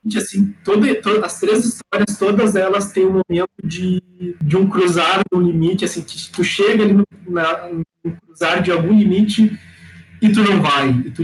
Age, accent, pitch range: 20-39, Brazilian, 155-200 Hz